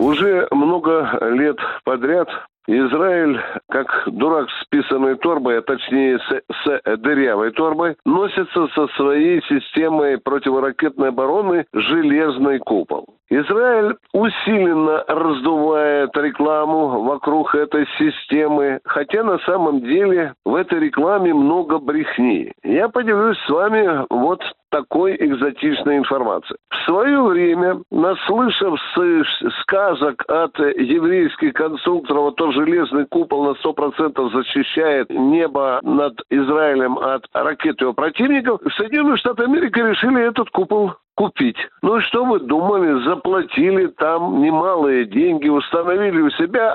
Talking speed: 115 wpm